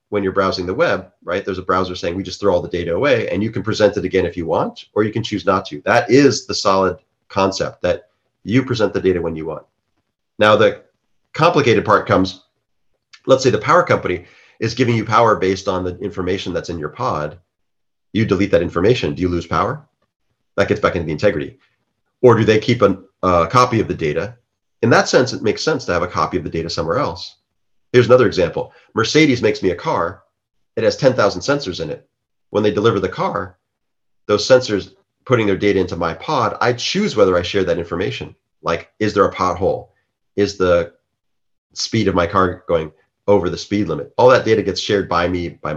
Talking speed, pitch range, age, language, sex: 215 wpm, 90-110 Hz, 40-59, English, male